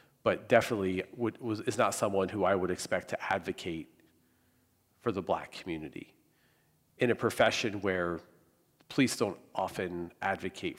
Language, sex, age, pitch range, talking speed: English, male, 40-59, 85-115 Hz, 130 wpm